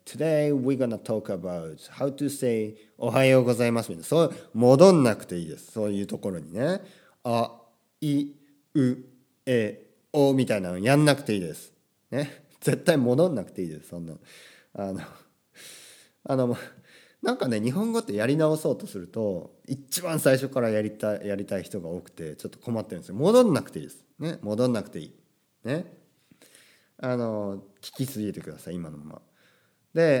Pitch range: 110-165 Hz